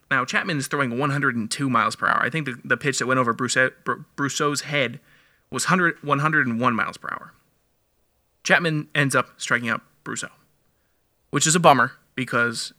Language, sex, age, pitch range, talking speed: English, male, 20-39, 120-145 Hz, 175 wpm